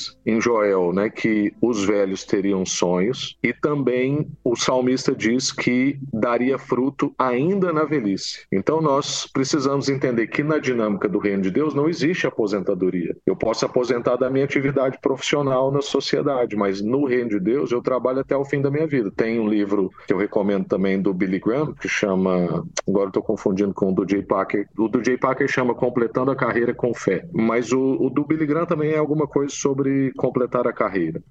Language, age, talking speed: Portuguese, 40-59, 190 wpm